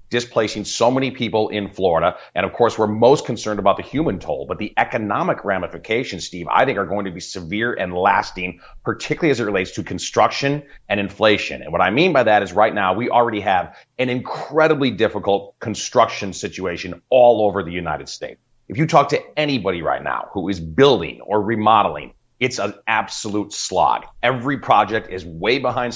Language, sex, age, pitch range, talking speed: English, male, 30-49, 100-130 Hz, 185 wpm